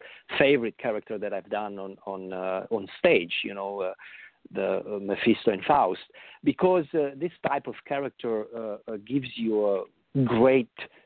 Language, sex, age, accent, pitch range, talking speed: English, male, 50-69, Italian, 105-135 Hz, 165 wpm